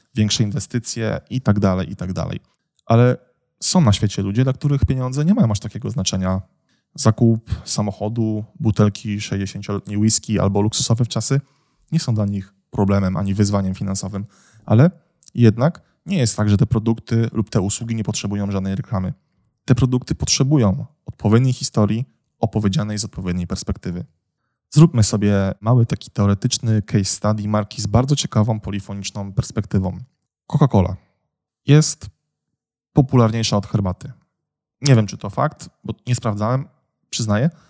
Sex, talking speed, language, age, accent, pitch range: male, 145 wpm, Polish, 20-39, native, 100-130 Hz